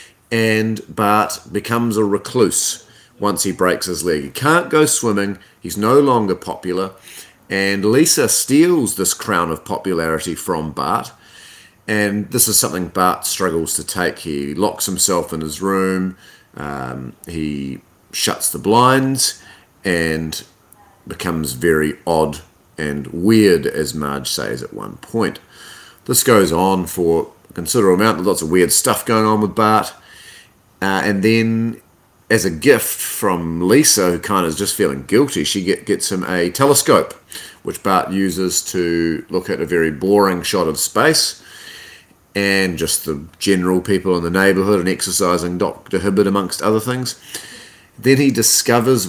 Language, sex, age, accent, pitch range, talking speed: English, male, 30-49, Australian, 85-105 Hz, 150 wpm